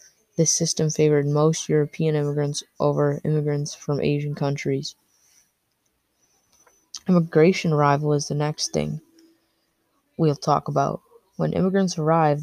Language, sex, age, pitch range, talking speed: English, female, 20-39, 150-170 Hz, 110 wpm